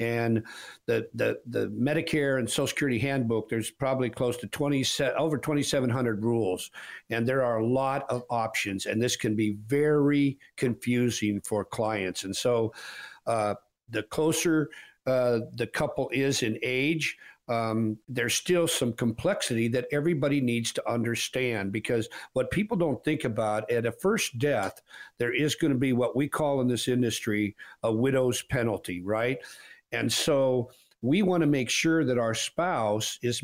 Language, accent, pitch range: English, American, 115-140 Hz